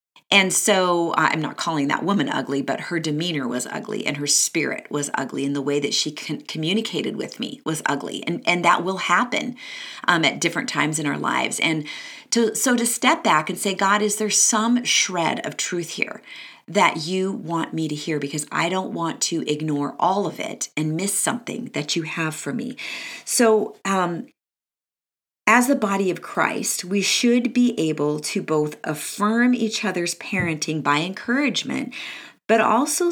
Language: English